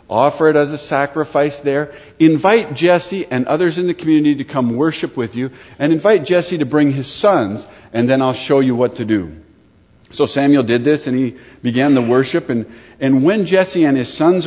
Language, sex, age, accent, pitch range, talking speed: English, male, 50-69, American, 120-155 Hz, 205 wpm